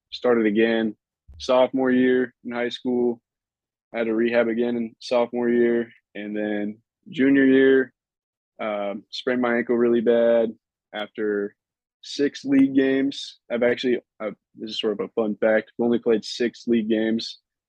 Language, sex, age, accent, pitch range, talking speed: English, male, 20-39, American, 105-120 Hz, 155 wpm